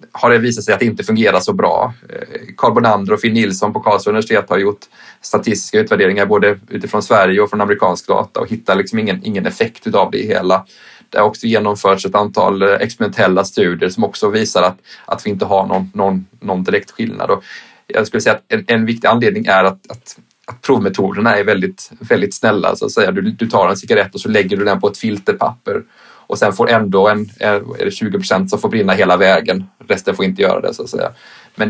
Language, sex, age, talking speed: Swedish, male, 20-39, 220 wpm